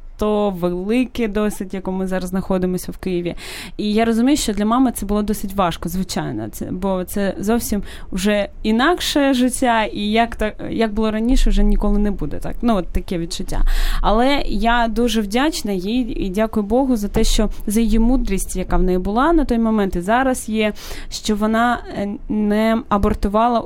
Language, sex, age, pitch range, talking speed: Ukrainian, female, 20-39, 190-225 Hz, 180 wpm